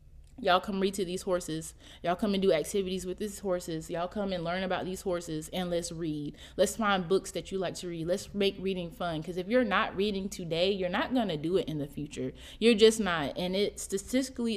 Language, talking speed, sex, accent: English, 235 wpm, female, American